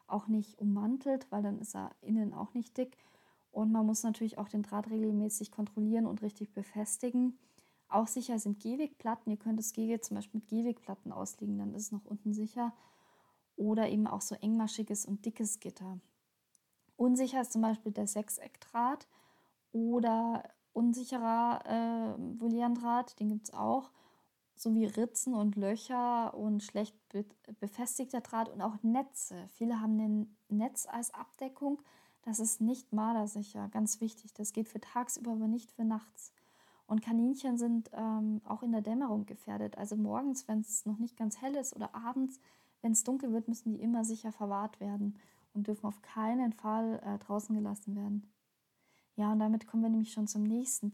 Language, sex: German, female